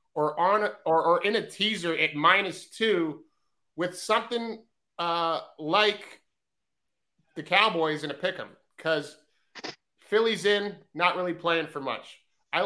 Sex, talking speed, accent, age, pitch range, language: male, 135 wpm, American, 30-49, 155-190 Hz, English